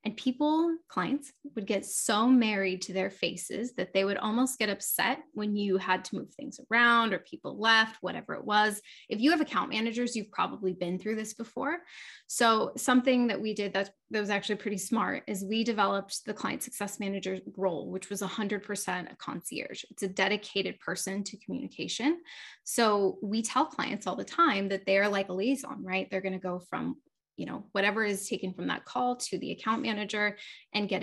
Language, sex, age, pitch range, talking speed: English, female, 10-29, 190-235 Hz, 195 wpm